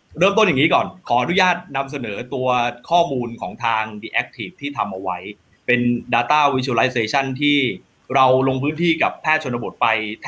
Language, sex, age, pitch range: Thai, male, 20-39, 120-155 Hz